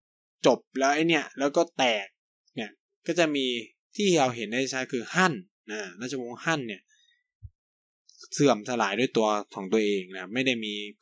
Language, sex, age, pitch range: Thai, male, 20-39, 110-150 Hz